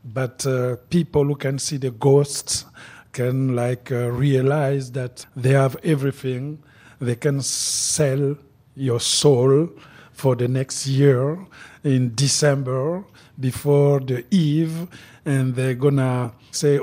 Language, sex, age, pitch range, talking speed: English, male, 50-69, 125-150 Hz, 125 wpm